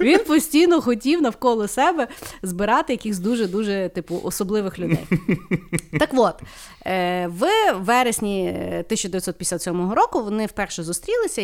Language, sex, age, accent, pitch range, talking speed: Ukrainian, female, 30-49, native, 170-235 Hz, 105 wpm